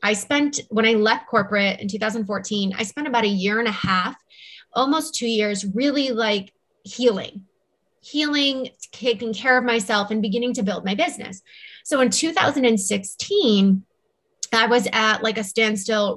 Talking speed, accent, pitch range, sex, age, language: 155 wpm, American, 210-265 Hz, female, 20-39, English